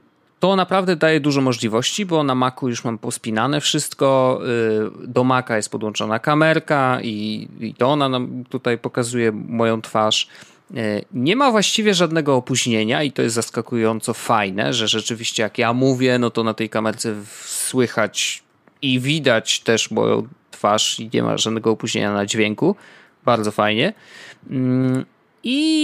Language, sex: Polish, male